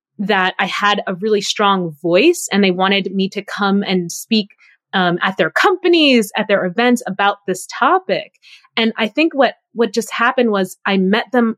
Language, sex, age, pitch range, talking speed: English, female, 20-39, 190-230 Hz, 185 wpm